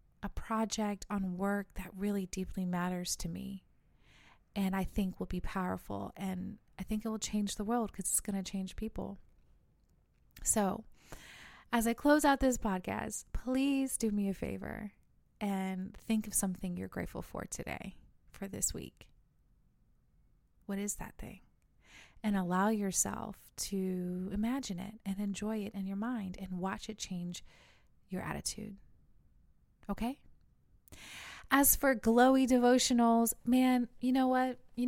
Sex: female